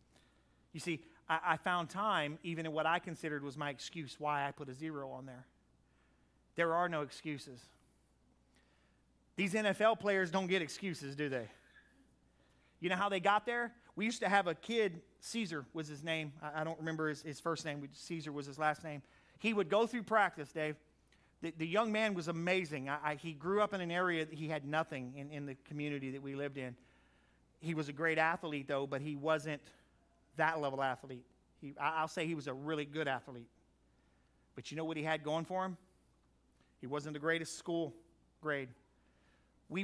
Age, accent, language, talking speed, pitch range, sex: 40-59, American, English, 195 wpm, 140-180 Hz, male